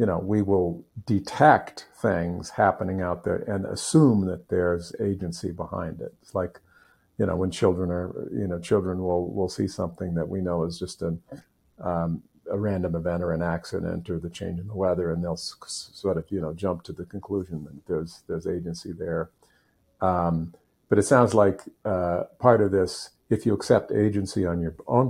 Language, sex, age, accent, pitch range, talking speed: English, male, 50-69, American, 85-95 Hz, 195 wpm